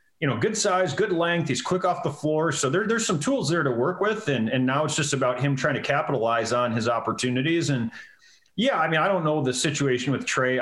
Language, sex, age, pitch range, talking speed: English, male, 30-49, 125-175 Hz, 250 wpm